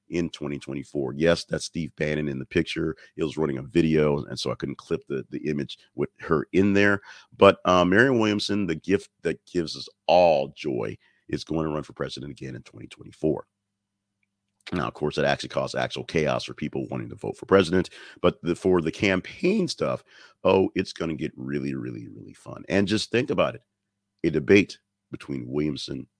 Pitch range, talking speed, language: 75-100 Hz, 195 wpm, English